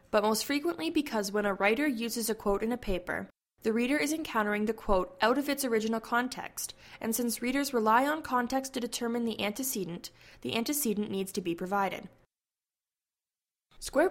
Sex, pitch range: female, 195-240 Hz